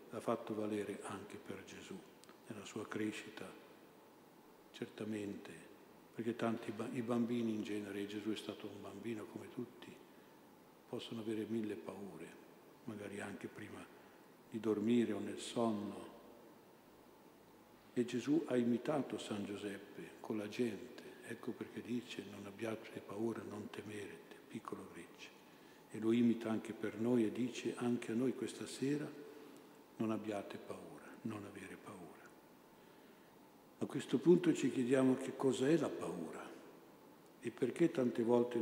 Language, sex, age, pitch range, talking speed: Italian, male, 60-79, 105-120 Hz, 140 wpm